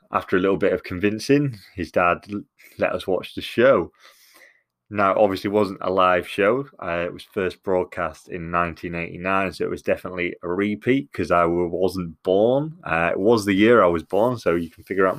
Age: 20-39